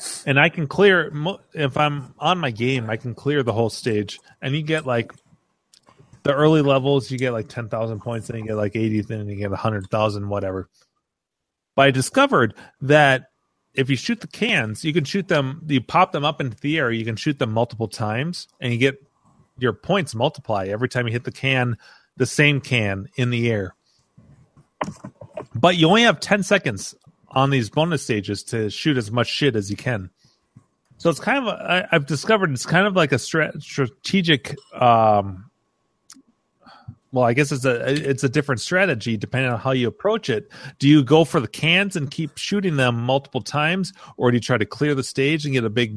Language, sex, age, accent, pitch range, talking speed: English, male, 30-49, American, 115-155 Hz, 195 wpm